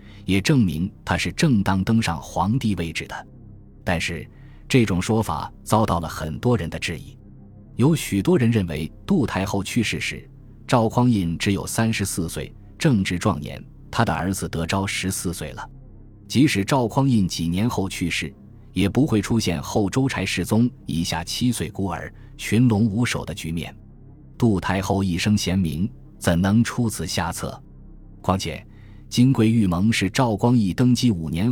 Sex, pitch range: male, 85-115 Hz